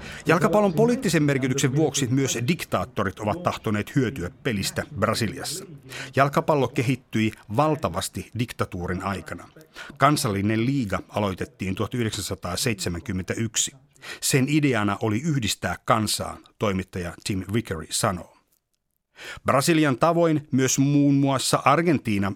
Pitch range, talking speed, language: 100-135 Hz, 95 wpm, Finnish